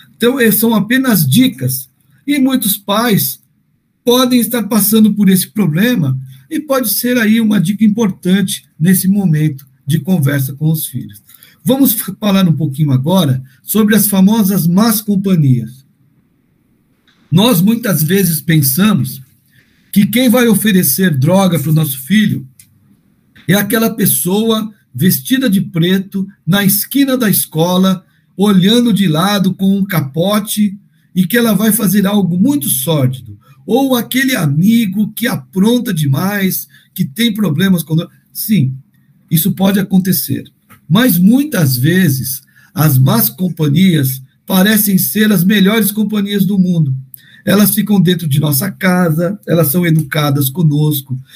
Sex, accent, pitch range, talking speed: male, Brazilian, 155-215 Hz, 130 wpm